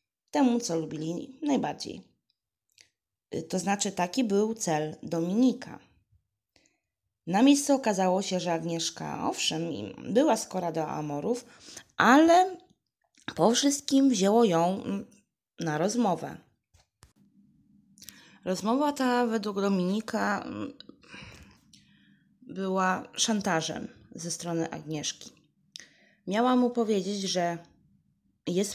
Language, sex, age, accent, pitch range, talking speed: Polish, female, 20-39, native, 170-230 Hz, 90 wpm